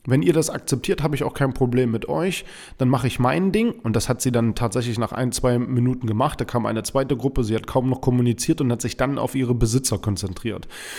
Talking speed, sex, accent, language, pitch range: 245 wpm, male, German, German, 125-150 Hz